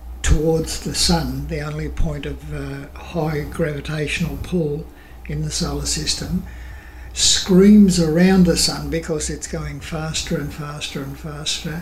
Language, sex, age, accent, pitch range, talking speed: English, male, 60-79, Australian, 150-175 Hz, 135 wpm